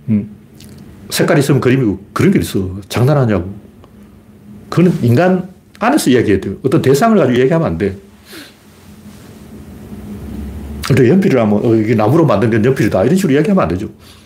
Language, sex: Korean, male